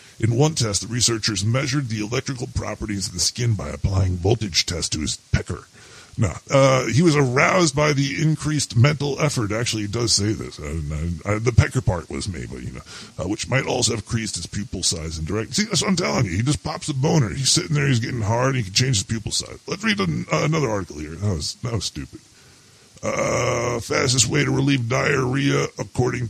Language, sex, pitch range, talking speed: English, female, 100-130 Hz, 225 wpm